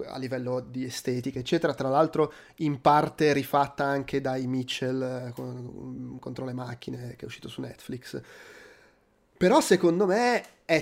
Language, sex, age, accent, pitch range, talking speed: Italian, male, 20-39, native, 140-180 Hz, 145 wpm